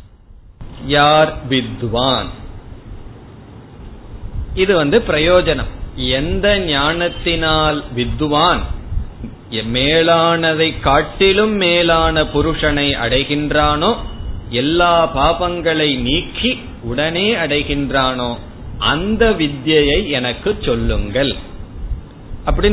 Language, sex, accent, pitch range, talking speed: Tamil, male, native, 120-170 Hz, 55 wpm